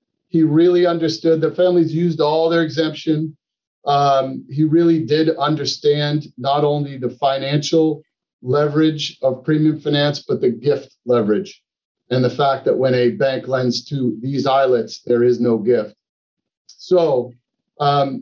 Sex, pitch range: male, 130-160 Hz